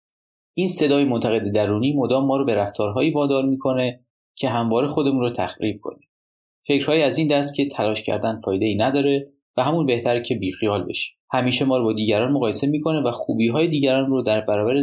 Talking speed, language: 180 wpm, Persian